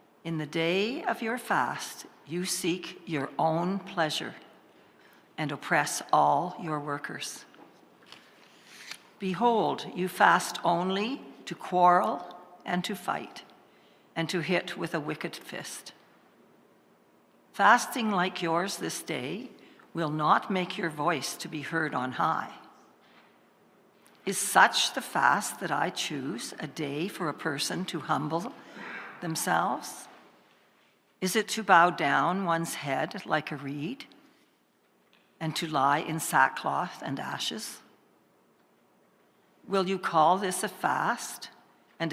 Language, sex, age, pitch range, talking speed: English, female, 60-79, 155-185 Hz, 120 wpm